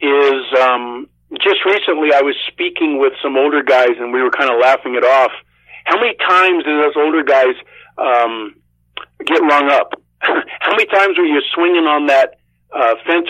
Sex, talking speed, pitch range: male, 180 wpm, 135-195 Hz